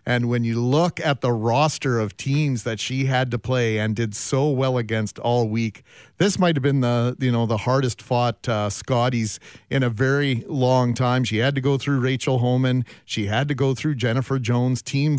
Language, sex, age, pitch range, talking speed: English, male, 40-59, 125-170 Hz, 210 wpm